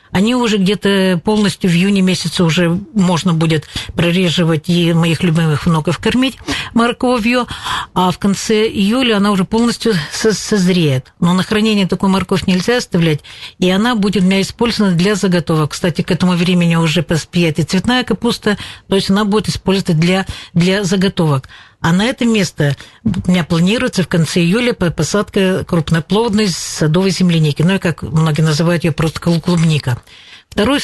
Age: 50-69